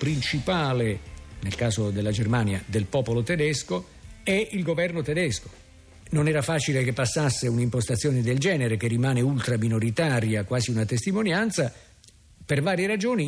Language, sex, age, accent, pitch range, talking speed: Italian, male, 50-69, native, 110-155 Hz, 135 wpm